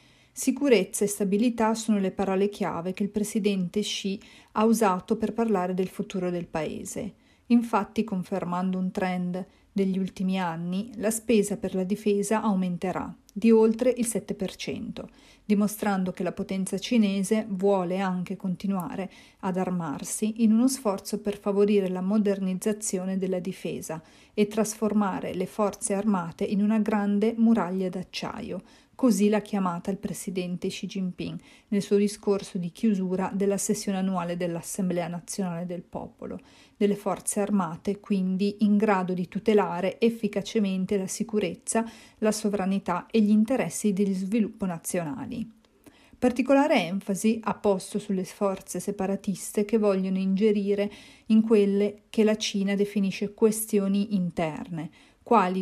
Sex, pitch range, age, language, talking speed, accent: female, 190-215 Hz, 40-59, Italian, 130 wpm, native